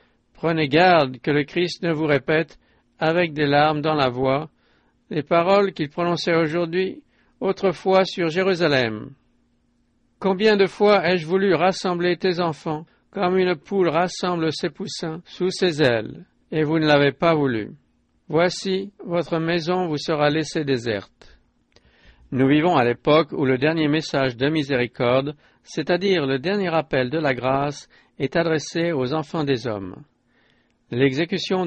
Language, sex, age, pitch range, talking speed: English, male, 60-79, 140-180 Hz, 145 wpm